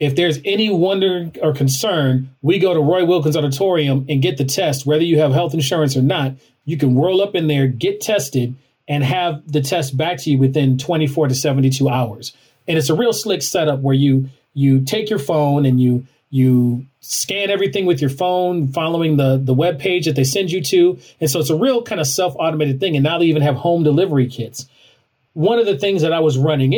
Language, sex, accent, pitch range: English, male, American, 135-175 Hz